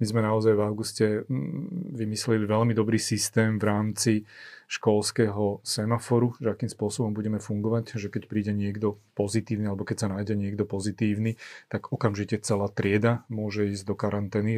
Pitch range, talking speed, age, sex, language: 105-115 Hz, 150 wpm, 30-49, male, Slovak